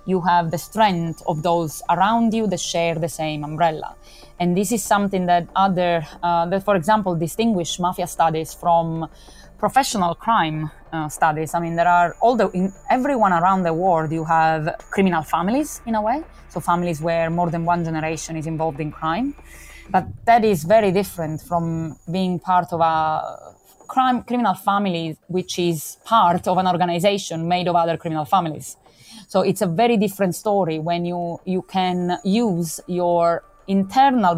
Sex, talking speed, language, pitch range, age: female, 170 wpm, English, 165-195 Hz, 20-39